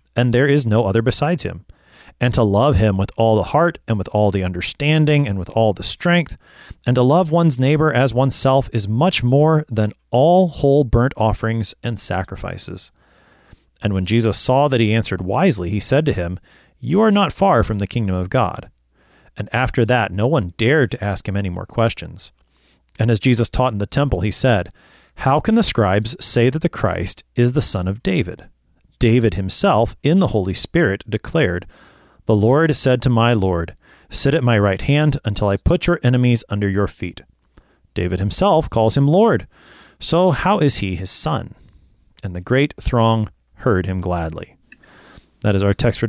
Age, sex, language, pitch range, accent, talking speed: 30-49, male, English, 100-135 Hz, American, 190 wpm